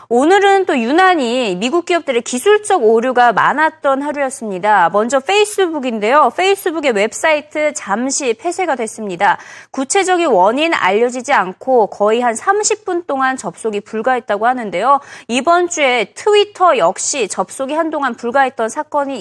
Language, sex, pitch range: Korean, female, 220-330 Hz